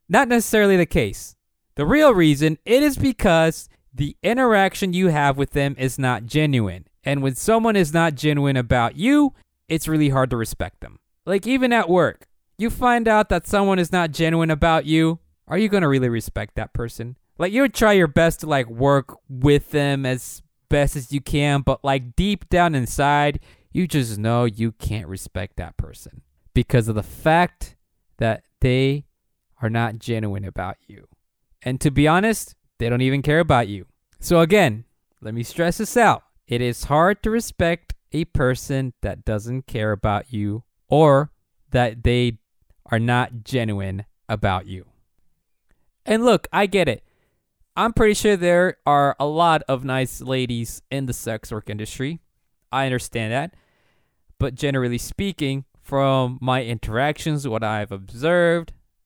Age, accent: 20-39, American